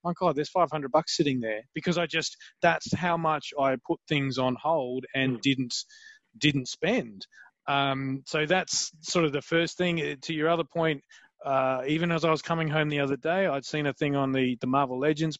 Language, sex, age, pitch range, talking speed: English, male, 30-49, 135-165 Hz, 210 wpm